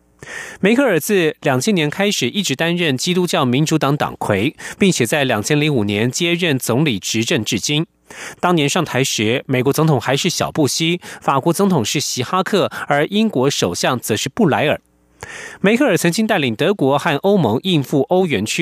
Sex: male